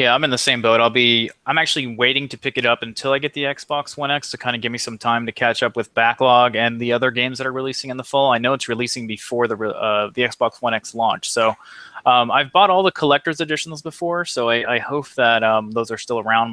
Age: 20-39